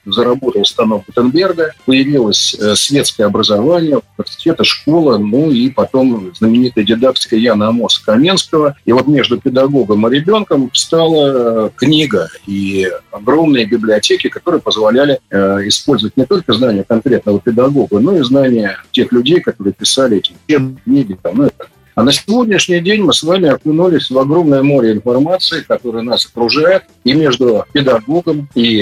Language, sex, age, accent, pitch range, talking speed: Russian, male, 50-69, native, 120-160 Hz, 130 wpm